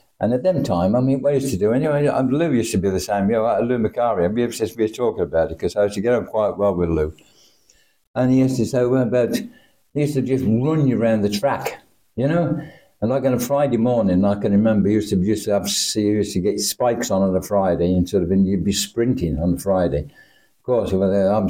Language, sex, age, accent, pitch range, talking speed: English, male, 60-79, British, 95-120 Hz, 260 wpm